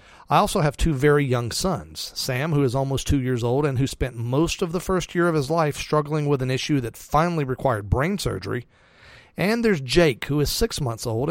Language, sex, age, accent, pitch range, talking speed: English, male, 40-59, American, 120-155 Hz, 225 wpm